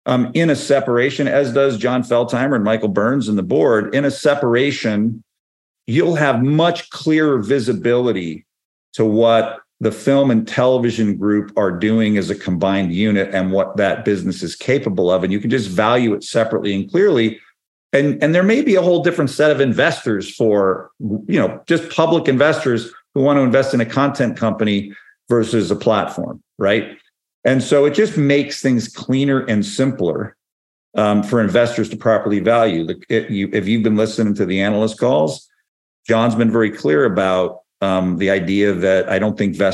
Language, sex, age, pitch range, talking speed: English, male, 50-69, 100-135 Hz, 175 wpm